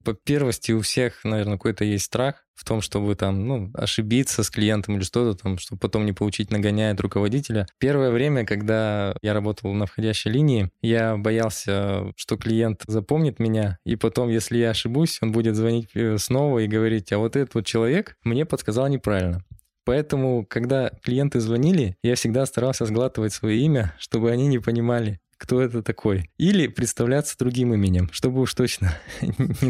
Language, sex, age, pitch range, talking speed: Russian, male, 20-39, 105-135 Hz, 165 wpm